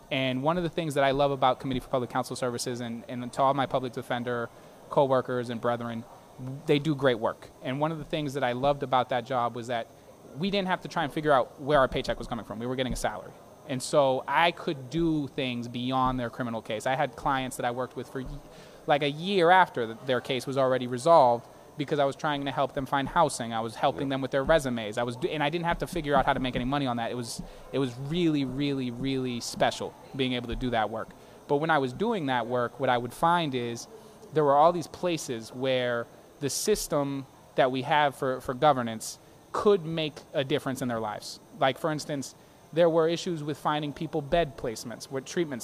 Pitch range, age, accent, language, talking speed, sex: 125-155 Hz, 20-39, American, English, 235 wpm, male